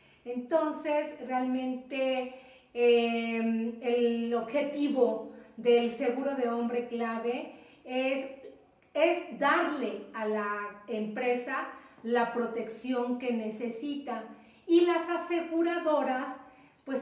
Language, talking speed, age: Spanish, 85 wpm, 40-59